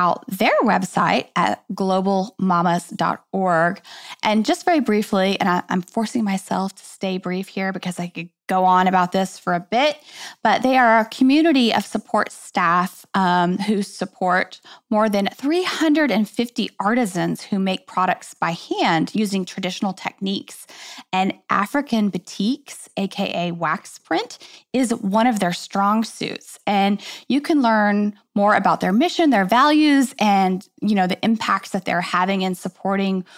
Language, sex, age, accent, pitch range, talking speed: English, female, 10-29, American, 190-255 Hz, 145 wpm